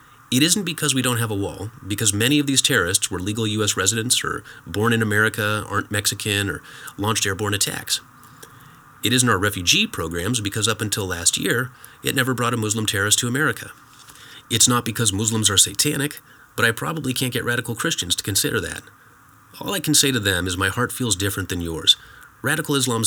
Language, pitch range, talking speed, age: English, 100-130 Hz, 200 wpm, 30-49